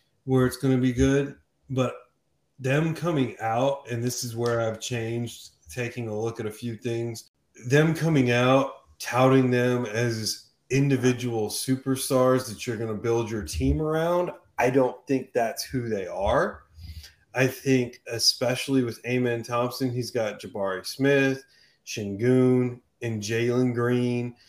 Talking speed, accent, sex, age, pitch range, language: 145 wpm, American, male, 30-49, 105-125 Hz, English